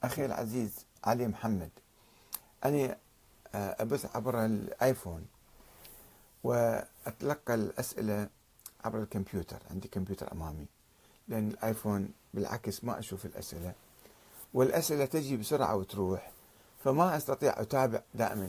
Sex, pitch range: male, 100-135 Hz